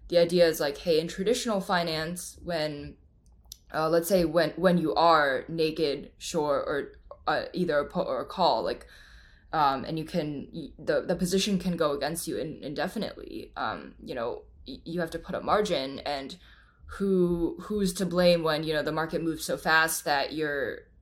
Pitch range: 155-185 Hz